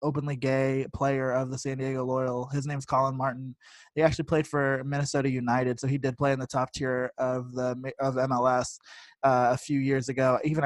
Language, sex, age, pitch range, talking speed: English, male, 20-39, 130-160 Hz, 205 wpm